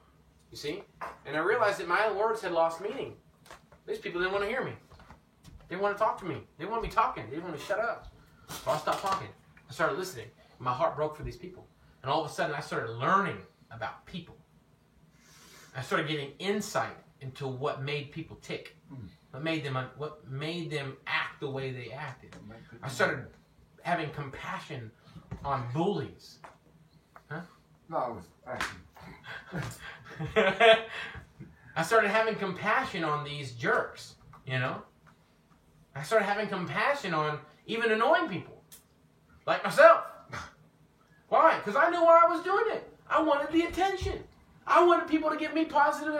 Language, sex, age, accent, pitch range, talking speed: English, male, 30-49, American, 135-225 Hz, 170 wpm